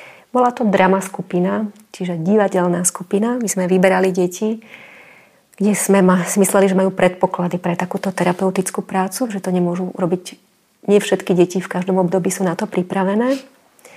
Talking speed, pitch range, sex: 145 wpm, 185-210 Hz, female